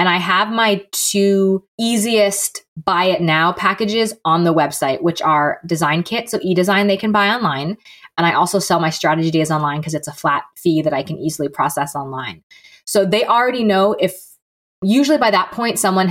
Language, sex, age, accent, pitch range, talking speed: English, female, 20-39, American, 160-205 Hz, 195 wpm